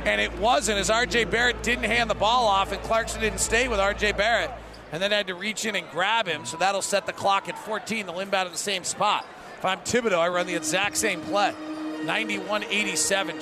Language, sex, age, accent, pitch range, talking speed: English, male, 40-59, American, 205-245 Hz, 230 wpm